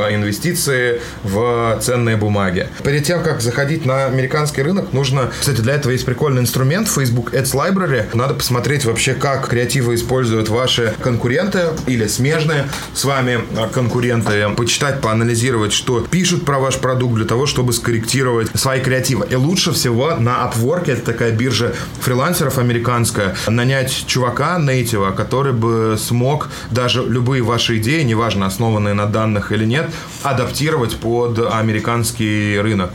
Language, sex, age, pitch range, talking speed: Russian, male, 20-39, 105-130 Hz, 140 wpm